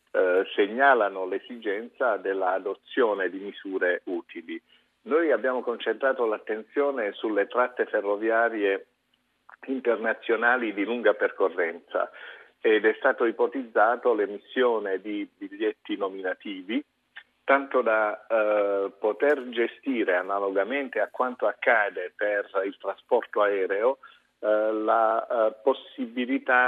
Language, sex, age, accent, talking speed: Italian, male, 50-69, native, 90 wpm